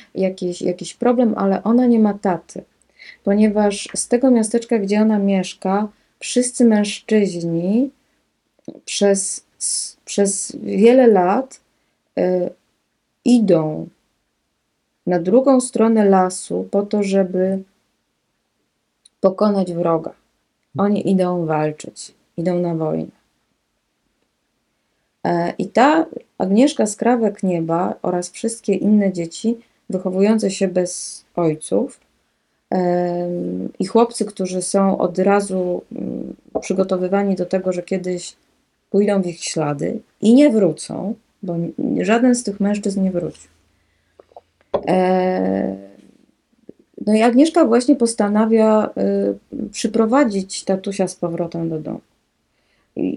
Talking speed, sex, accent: 100 wpm, female, native